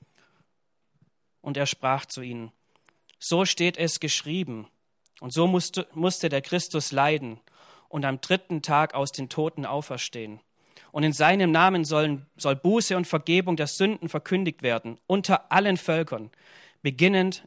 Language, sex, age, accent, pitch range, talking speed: German, male, 40-59, German, 135-175 Hz, 135 wpm